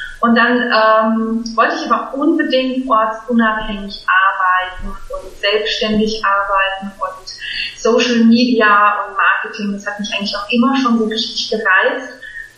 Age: 30-49